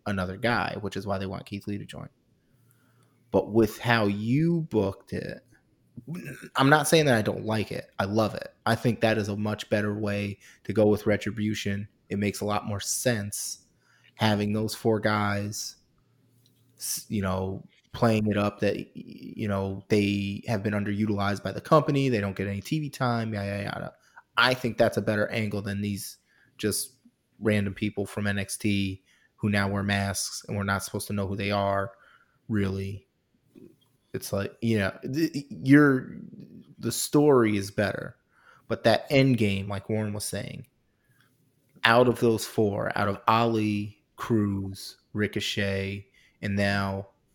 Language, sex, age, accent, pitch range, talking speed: English, male, 20-39, American, 100-120 Hz, 160 wpm